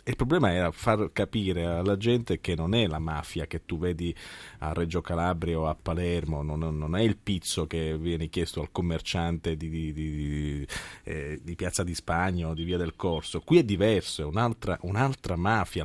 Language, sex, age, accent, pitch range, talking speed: Italian, male, 30-49, native, 85-110 Hz, 195 wpm